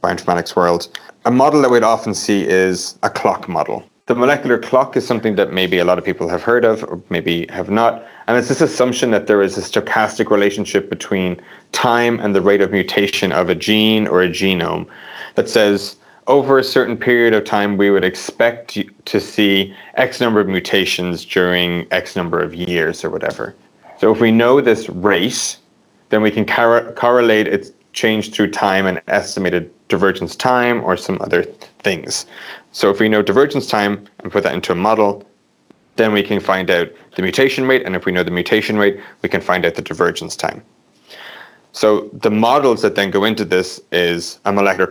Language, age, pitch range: English, 30-49, 90-120 Hz